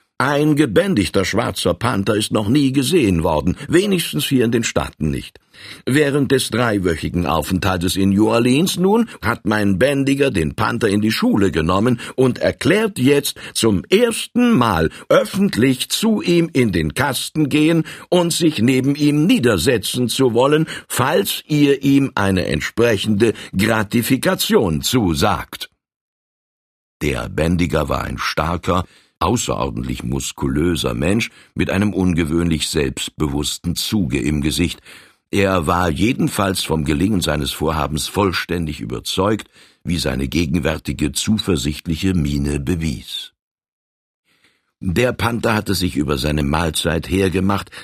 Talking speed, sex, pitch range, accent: 120 wpm, male, 80-130 Hz, German